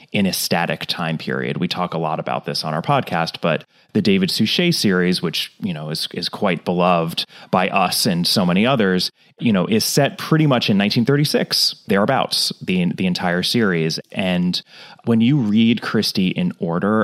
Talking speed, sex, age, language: 185 wpm, male, 30-49, English